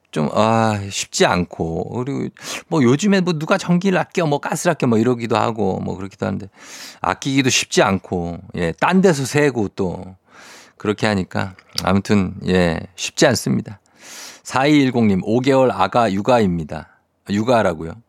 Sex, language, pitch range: male, Korean, 95-135 Hz